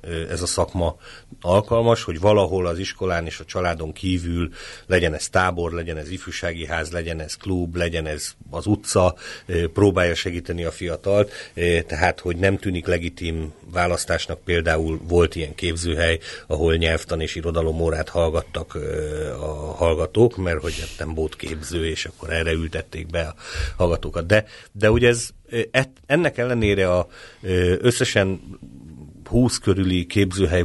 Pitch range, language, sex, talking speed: 85-100 Hz, Hungarian, male, 135 wpm